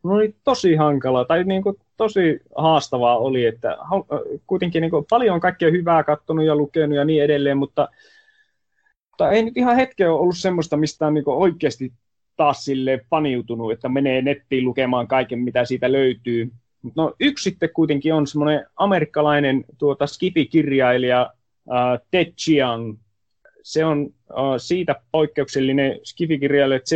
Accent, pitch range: native, 125-160 Hz